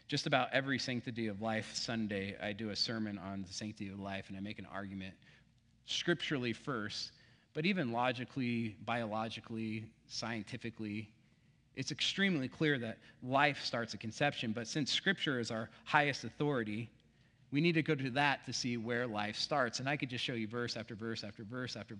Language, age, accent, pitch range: English, 30-49, American, 110-135 Hz